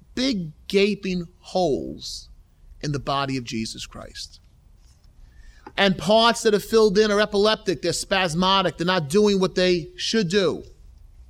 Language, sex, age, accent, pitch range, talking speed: English, male, 30-49, American, 140-200 Hz, 140 wpm